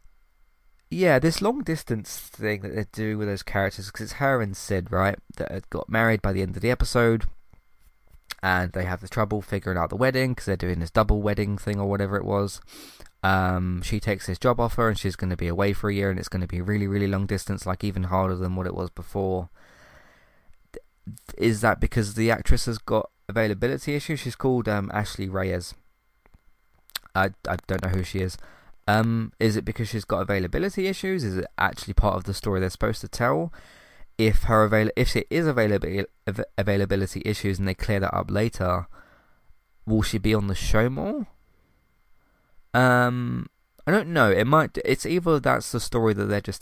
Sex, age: male, 20-39